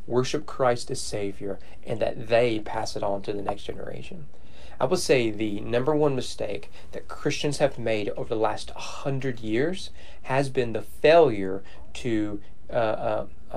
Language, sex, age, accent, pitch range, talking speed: English, male, 30-49, American, 100-130 Hz, 165 wpm